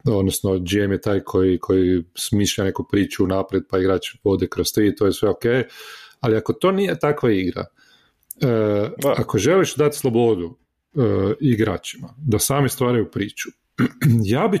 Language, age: Croatian, 40-59